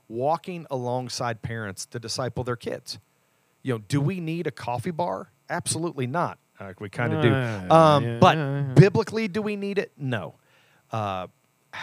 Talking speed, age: 155 wpm, 40-59